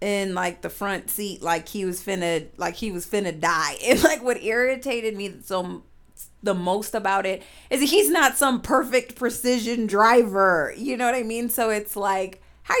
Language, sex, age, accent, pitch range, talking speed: English, female, 30-49, American, 185-245 Hz, 185 wpm